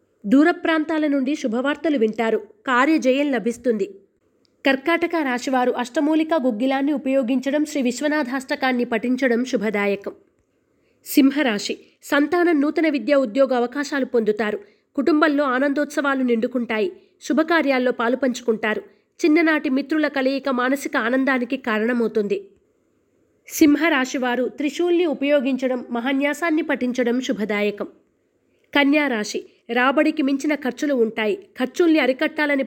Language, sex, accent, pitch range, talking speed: Telugu, female, native, 245-300 Hz, 90 wpm